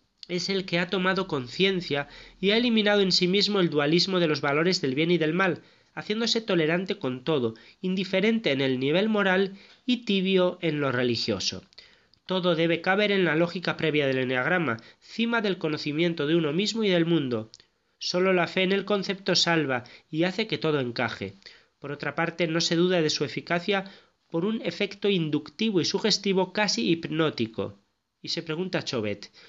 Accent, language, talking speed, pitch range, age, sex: Spanish, Spanish, 175 wpm, 145-190 Hz, 30-49, male